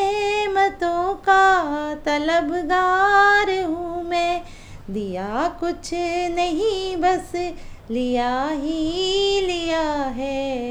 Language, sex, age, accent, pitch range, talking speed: English, female, 20-39, Indian, 260-365 Hz, 65 wpm